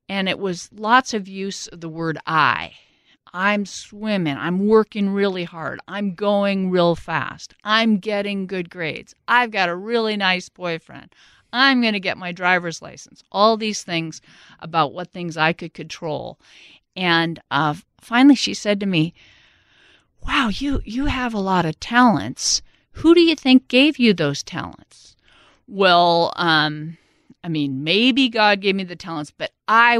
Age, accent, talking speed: 50-69, American, 160 wpm